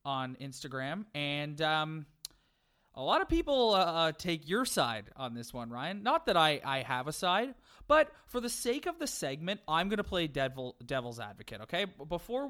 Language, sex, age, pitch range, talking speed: English, male, 30-49, 125-170 Hz, 185 wpm